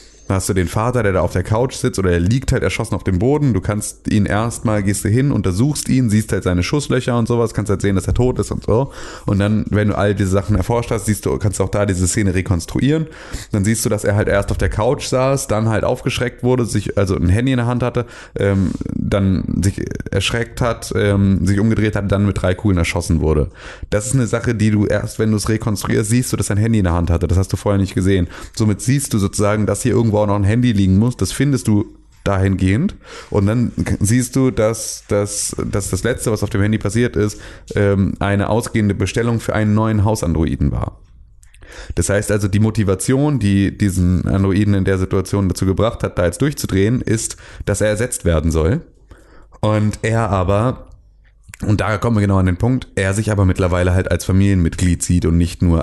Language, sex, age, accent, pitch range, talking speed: German, male, 30-49, German, 95-115 Hz, 225 wpm